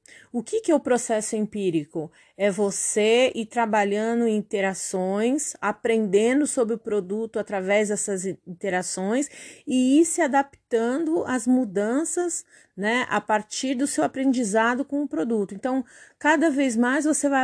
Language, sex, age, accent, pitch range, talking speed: Portuguese, female, 30-49, Brazilian, 215-270 Hz, 140 wpm